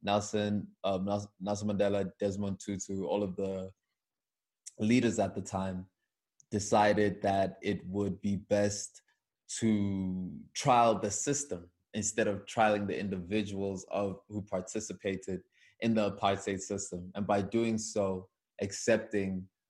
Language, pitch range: English, 95-110 Hz